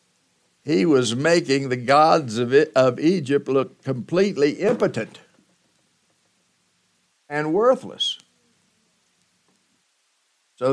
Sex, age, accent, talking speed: male, 60-79, American, 75 wpm